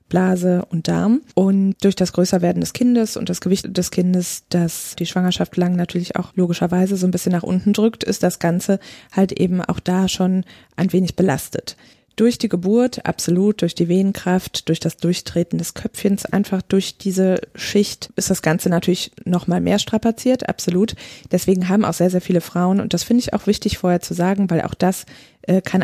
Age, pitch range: 20-39, 175-195 Hz